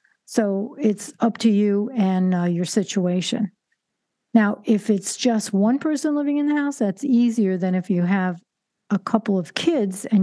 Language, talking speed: English, 175 wpm